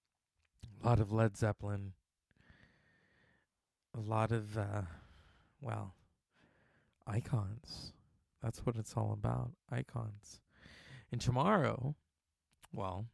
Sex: male